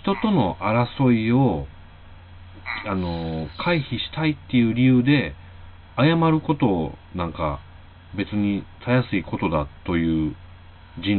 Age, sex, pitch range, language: 40-59, male, 90-125 Hz, Japanese